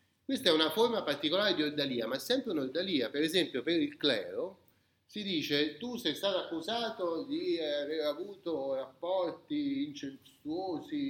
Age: 30-49